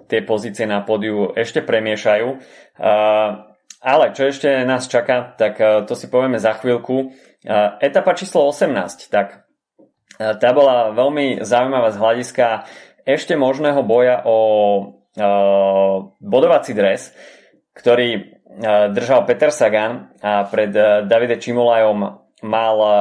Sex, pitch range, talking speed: male, 105-120 Hz, 110 wpm